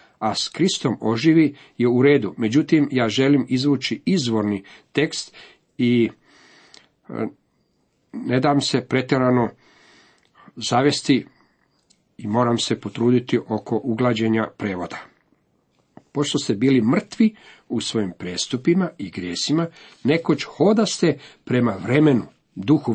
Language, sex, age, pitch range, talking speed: Croatian, male, 50-69, 115-150 Hz, 105 wpm